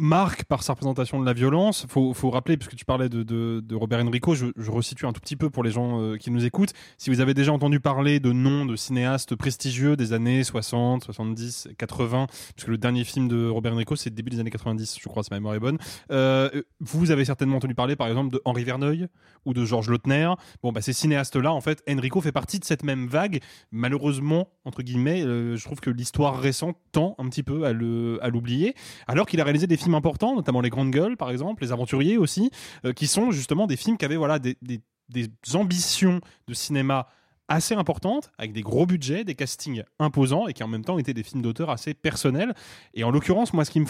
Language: French